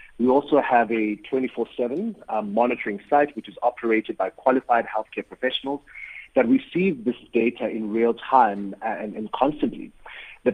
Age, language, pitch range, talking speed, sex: 30-49, English, 110-145 Hz, 140 wpm, male